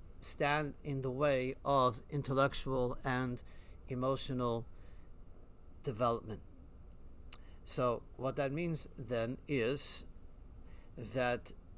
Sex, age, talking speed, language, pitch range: male, 50-69, 80 wpm, English, 95-135 Hz